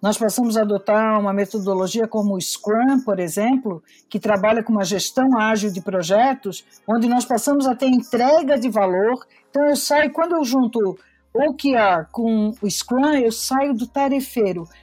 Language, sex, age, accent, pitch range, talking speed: Portuguese, female, 50-69, Brazilian, 215-270 Hz, 170 wpm